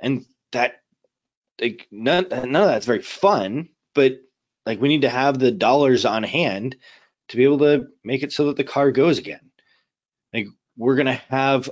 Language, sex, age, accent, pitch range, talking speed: English, male, 20-39, American, 105-135 Hz, 185 wpm